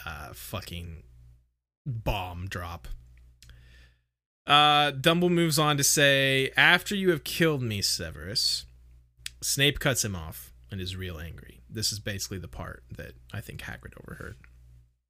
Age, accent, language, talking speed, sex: 30-49, American, English, 135 wpm, male